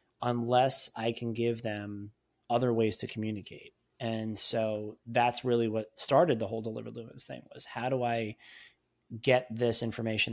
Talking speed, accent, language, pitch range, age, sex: 155 wpm, American, English, 110-130 Hz, 30-49, male